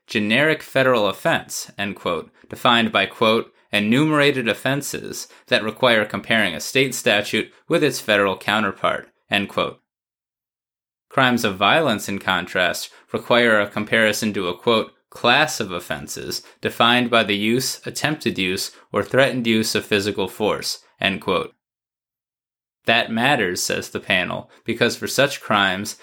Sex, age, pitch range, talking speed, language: male, 20-39, 100-125 Hz, 135 wpm, English